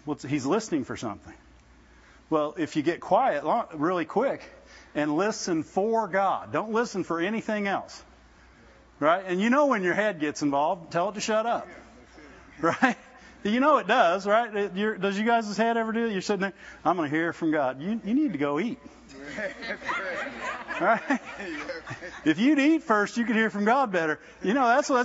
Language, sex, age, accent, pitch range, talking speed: English, male, 50-69, American, 175-255 Hz, 190 wpm